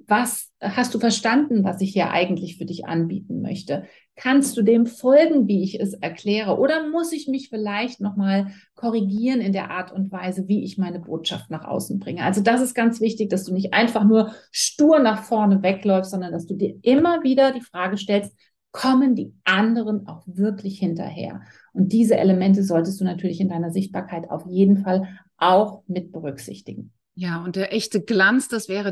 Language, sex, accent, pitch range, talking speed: German, female, German, 190-235 Hz, 185 wpm